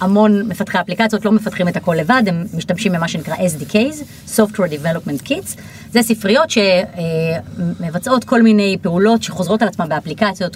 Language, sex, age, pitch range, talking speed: Hebrew, female, 30-49, 175-215 Hz, 150 wpm